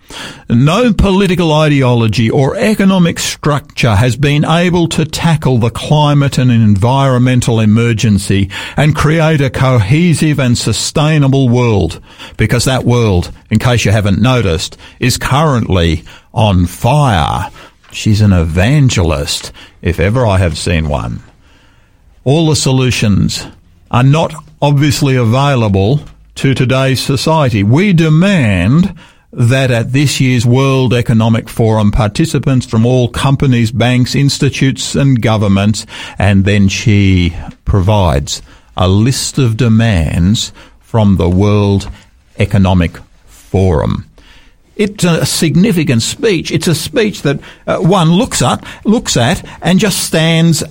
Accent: Australian